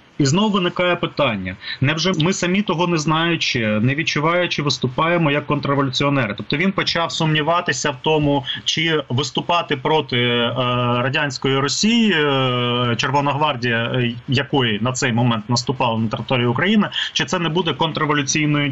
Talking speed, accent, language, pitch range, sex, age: 130 wpm, native, Ukrainian, 130-165 Hz, male, 30-49